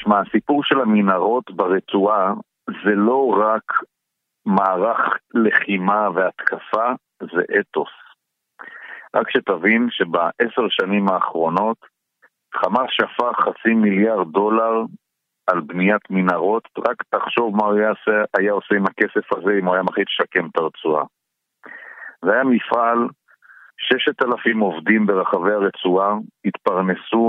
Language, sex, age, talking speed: Hebrew, male, 50-69, 110 wpm